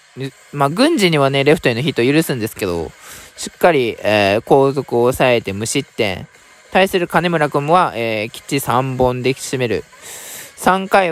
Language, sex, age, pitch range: Japanese, male, 20-39, 125-210 Hz